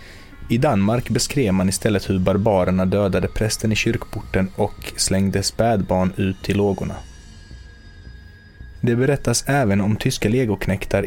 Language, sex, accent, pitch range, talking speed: Swedish, male, native, 95-115 Hz, 125 wpm